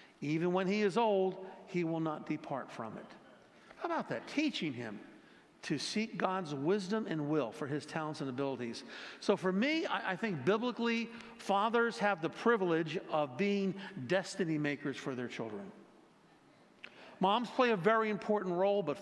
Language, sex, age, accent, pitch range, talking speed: English, male, 50-69, American, 150-205 Hz, 165 wpm